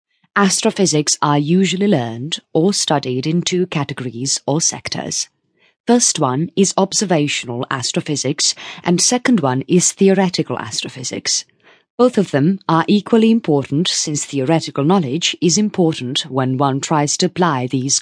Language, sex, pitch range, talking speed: English, female, 140-195 Hz, 130 wpm